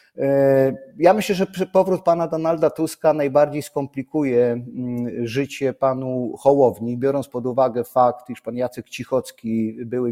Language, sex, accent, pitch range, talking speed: Polish, male, native, 120-150 Hz, 125 wpm